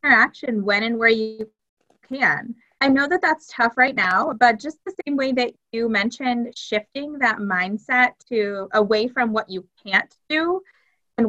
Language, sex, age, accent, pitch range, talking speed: English, female, 20-39, American, 200-250 Hz, 170 wpm